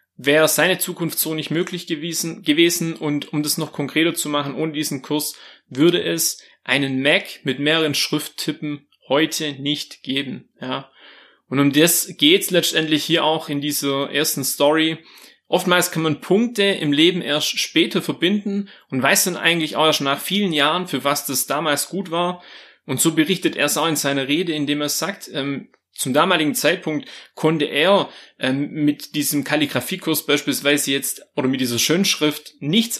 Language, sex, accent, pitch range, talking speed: German, male, German, 140-170 Hz, 175 wpm